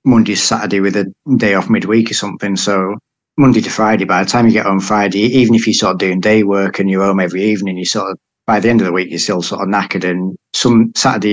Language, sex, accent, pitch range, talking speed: English, male, British, 95-105 Hz, 265 wpm